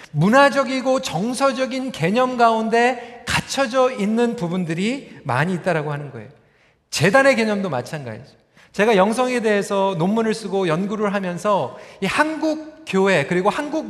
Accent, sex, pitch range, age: native, male, 210-275 Hz, 40-59